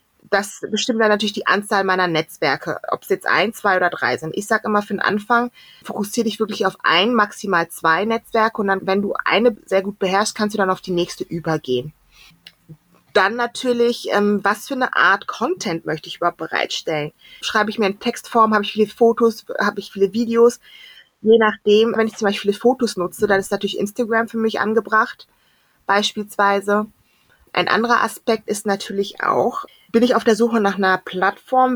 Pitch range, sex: 195-235 Hz, female